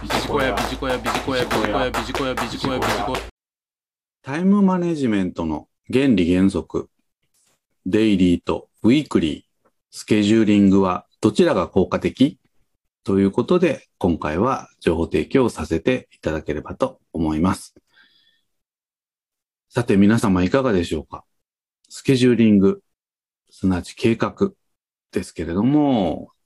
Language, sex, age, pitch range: Japanese, male, 40-59, 85-130 Hz